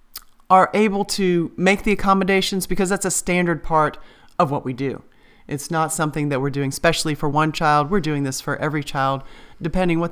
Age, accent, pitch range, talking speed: 40-59, American, 150-190 Hz, 195 wpm